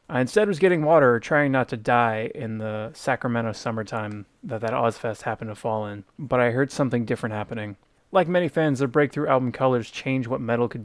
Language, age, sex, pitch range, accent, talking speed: English, 20-39, male, 120-150 Hz, American, 205 wpm